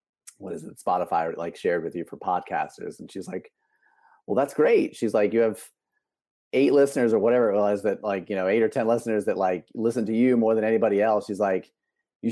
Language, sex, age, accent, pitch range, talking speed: English, male, 30-49, American, 100-125 Hz, 225 wpm